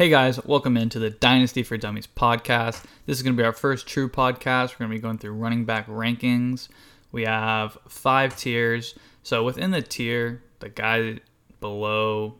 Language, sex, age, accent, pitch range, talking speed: English, male, 20-39, American, 110-125 Hz, 185 wpm